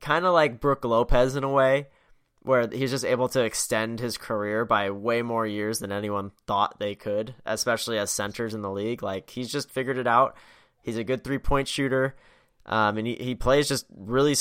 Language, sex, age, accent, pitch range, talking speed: English, male, 10-29, American, 110-135 Hz, 210 wpm